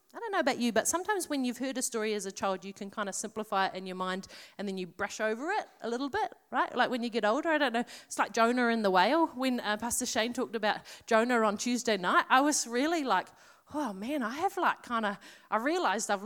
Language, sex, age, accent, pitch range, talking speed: English, female, 30-49, Australian, 235-315 Hz, 265 wpm